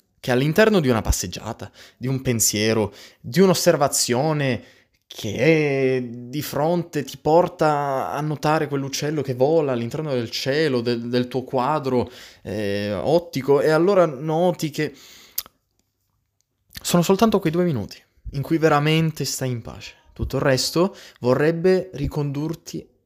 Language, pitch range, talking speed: Italian, 105-165 Hz, 130 wpm